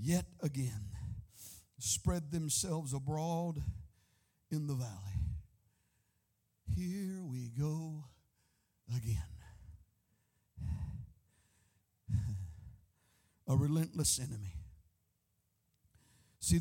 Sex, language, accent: male, English, American